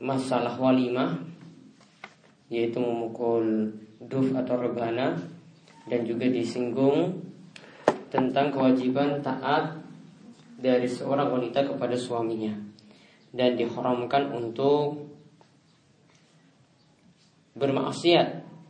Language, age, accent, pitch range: Indonesian, 20-39, native, 125-155 Hz